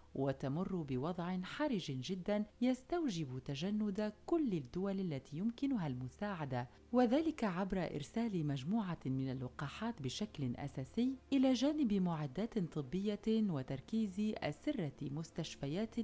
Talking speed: 95 wpm